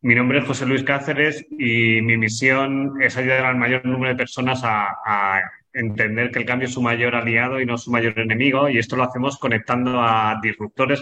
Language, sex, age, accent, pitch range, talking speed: Spanish, male, 20-39, Spanish, 115-135 Hz, 205 wpm